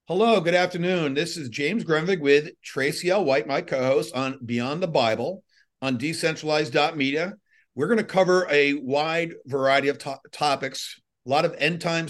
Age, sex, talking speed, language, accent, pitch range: 50-69, male, 170 wpm, English, American, 135-170 Hz